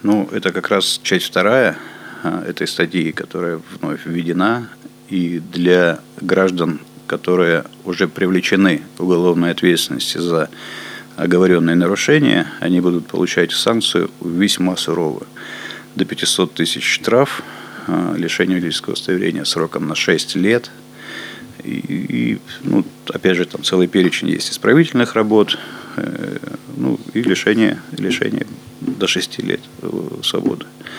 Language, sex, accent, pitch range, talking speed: Russian, male, native, 90-100 Hz, 115 wpm